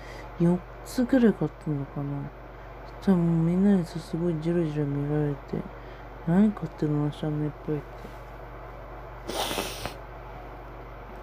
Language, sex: Japanese, female